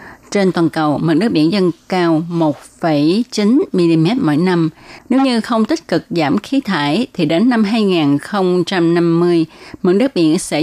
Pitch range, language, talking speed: 160-220 Hz, Vietnamese, 160 wpm